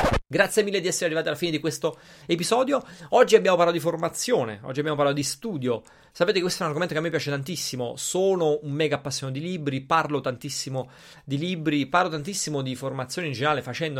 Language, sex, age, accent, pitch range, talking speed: Italian, male, 30-49, native, 135-175 Hz, 205 wpm